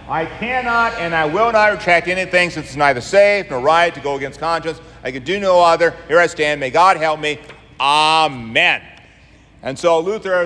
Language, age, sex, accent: English, 50-69, male, American